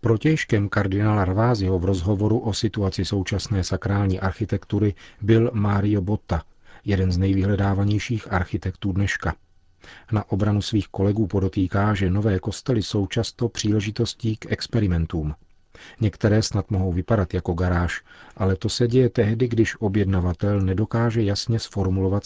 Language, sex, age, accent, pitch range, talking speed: Czech, male, 40-59, native, 95-110 Hz, 125 wpm